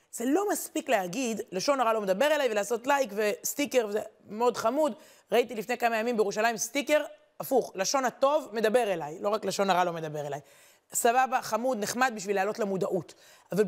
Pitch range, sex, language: 210-290 Hz, female, Hebrew